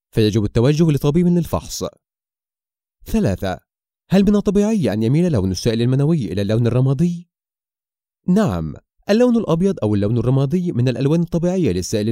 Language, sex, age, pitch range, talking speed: Arabic, male, 30-49, 110-175 Hz, 130 wpm